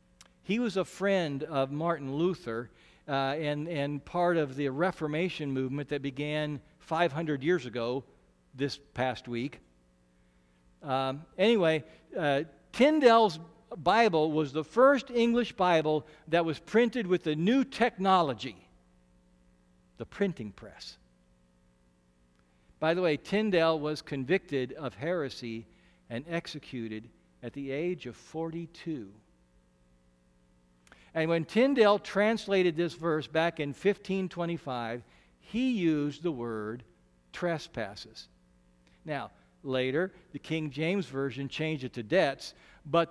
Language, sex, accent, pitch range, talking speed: English, male, American, 105-170 Hz, 115 wpm